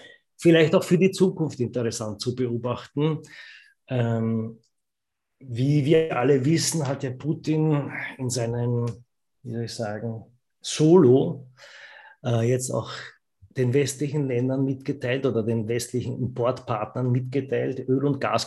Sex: male